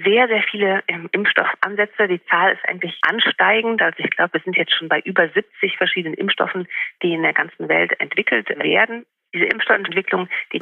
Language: German